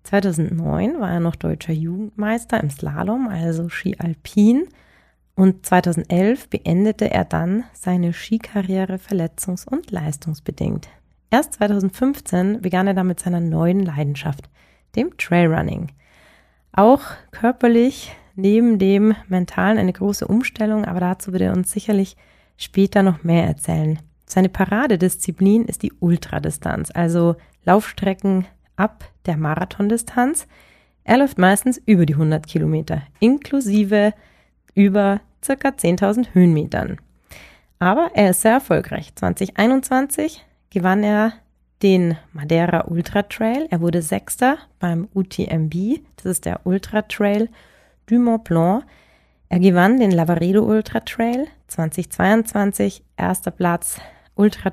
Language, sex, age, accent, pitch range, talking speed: German, female, 30-49, German, 170-215 Hz, 115 wpm